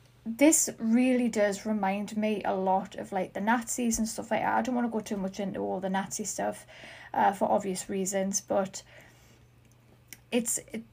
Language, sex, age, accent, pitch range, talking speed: English, female, 30-49, British, 190-225 Hz, 180 wpm